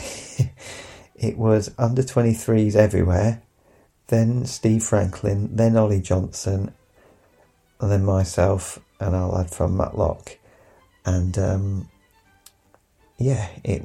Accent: British